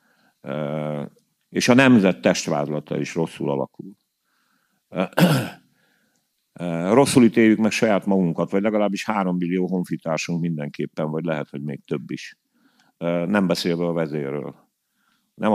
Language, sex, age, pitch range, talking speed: Hungarian, male, 50-69, 80-95 Hz, 130 wpm